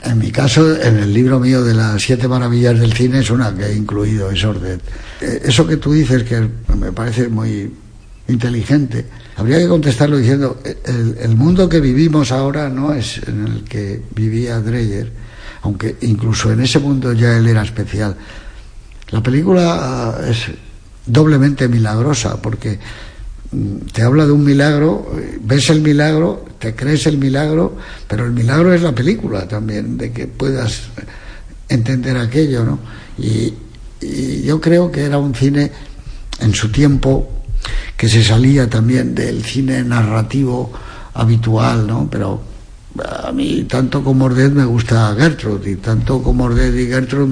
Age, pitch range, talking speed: 60-79, 110-135 Hz, 155 wpm